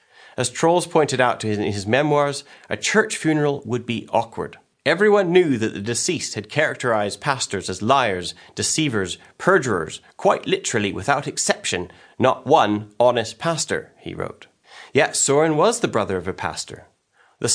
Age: 30-49